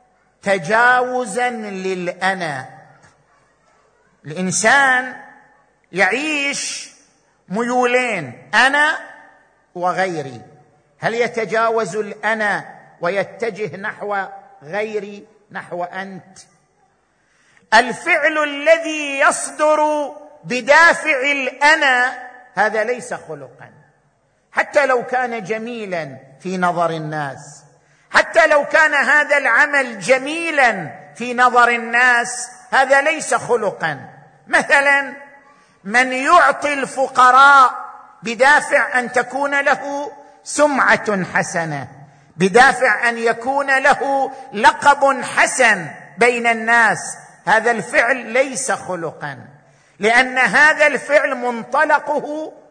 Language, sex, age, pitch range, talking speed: Arabic, male, 50-69, 190-280 Hz, 75 wpm